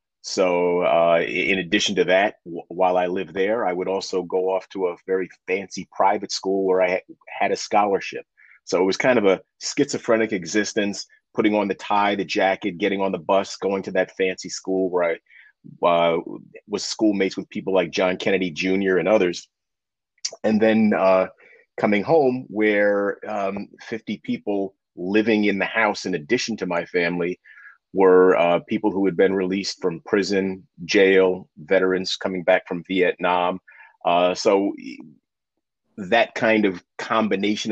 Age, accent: 30-49, American